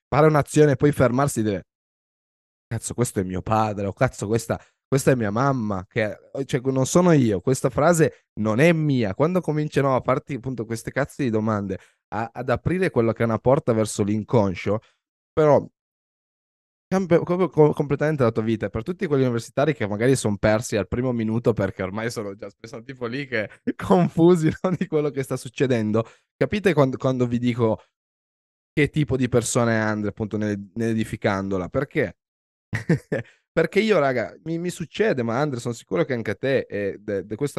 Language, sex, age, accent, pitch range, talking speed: Italian, male, 20-39, native, 105-135 Hz, 180 wpm